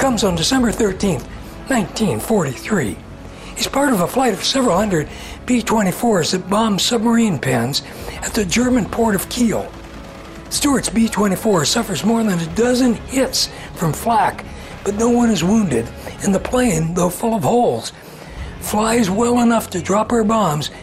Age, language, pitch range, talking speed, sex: 60-79, English, 145-225 Hz, 155 wpm, male